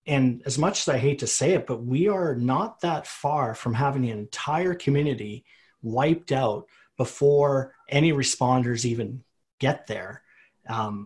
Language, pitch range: English, 120-145 Hz